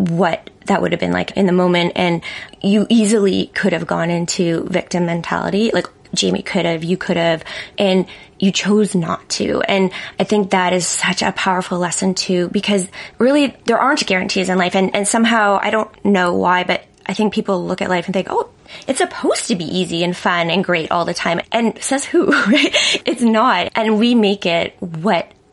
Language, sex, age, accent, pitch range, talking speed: English, female, 20-39, American, 175-210 Hz, 200 wpm